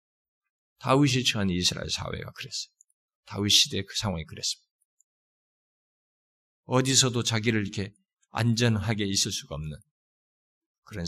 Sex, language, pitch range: male, Korean, 100-135 Hz